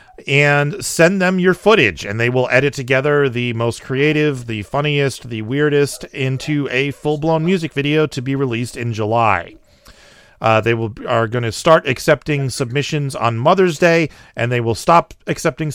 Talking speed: 170 wpm